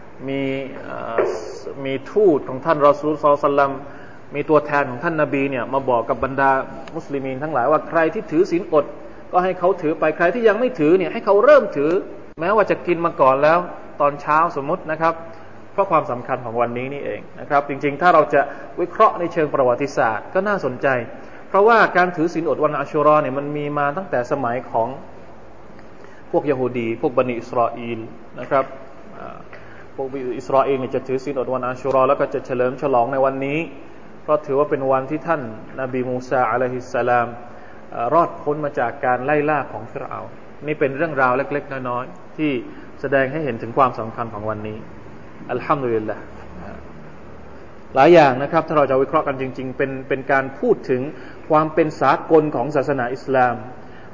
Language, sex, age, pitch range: Thai, male, 20-39, 130-155 Hz